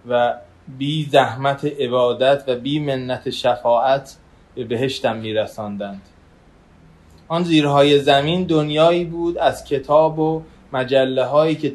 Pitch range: 120-150 Hz